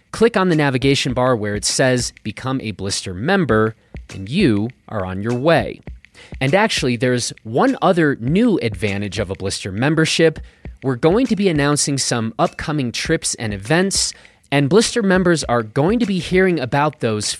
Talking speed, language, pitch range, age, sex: 170 wpm, English, 115-170 Hz, 30-49, male